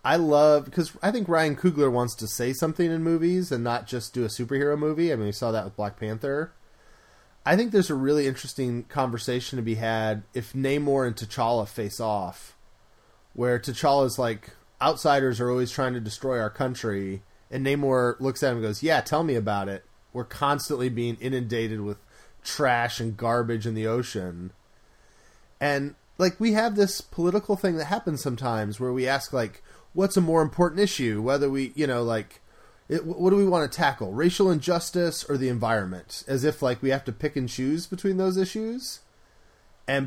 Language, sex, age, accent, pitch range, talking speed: English, male, 30-49, American, 115-150 Hz, 190 wpm